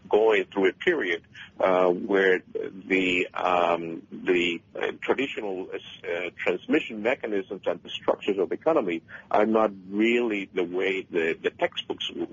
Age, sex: 50-69, male